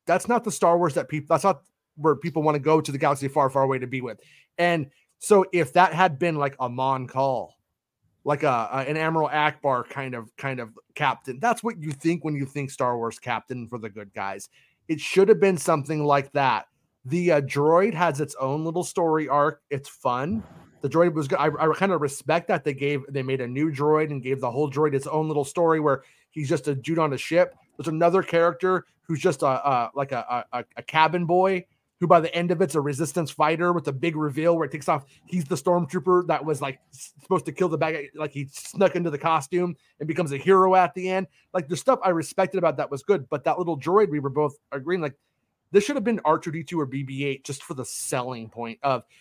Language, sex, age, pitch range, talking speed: English, male, 30-49, 140-175 Hz, 245 wpm